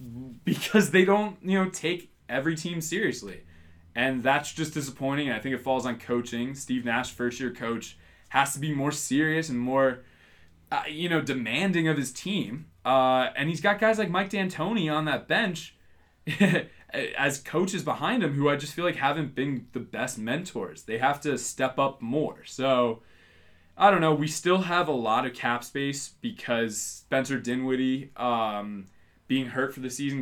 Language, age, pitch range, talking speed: English, 20-39, 120-150 Hz, 180 wpm